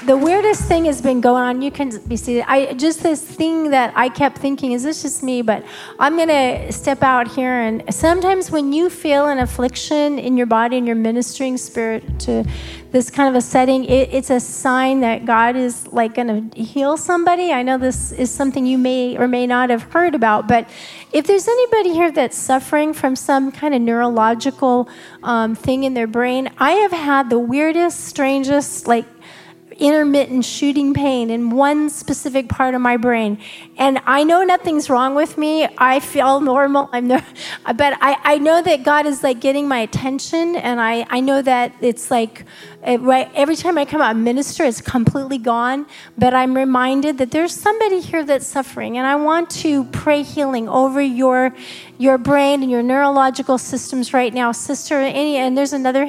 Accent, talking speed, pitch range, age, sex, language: American, 185 wpm, 245-295 Hz, 30-49, female, English